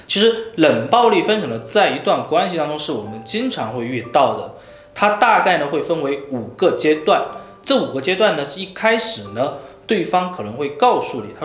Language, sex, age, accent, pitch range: Chinese, male, 20-39, native, 135-220 Hz